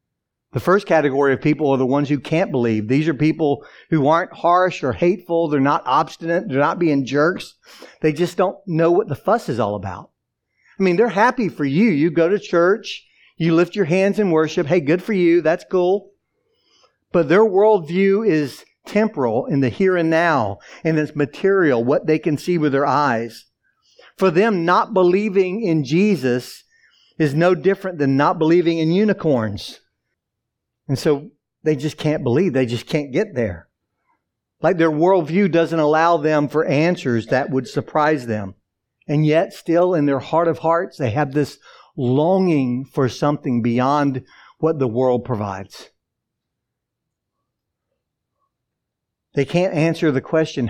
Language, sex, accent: English, male, American